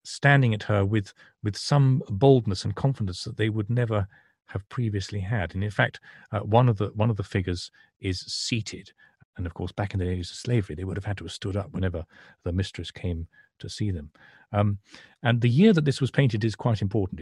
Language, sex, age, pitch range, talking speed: English, male, 40-59, 90-115 Hz, 215 wpm